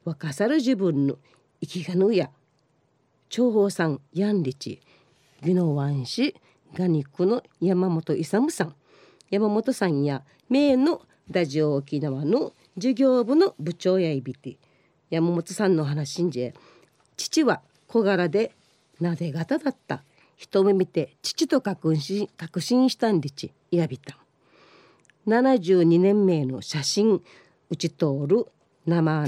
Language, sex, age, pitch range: Japanese, female, 40-59, 150-210 Hz